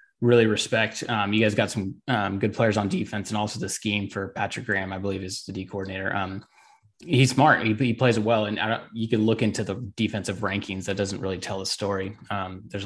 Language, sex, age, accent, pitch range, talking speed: English, male, 20-39, American, 100-115 Hz, 230 wpm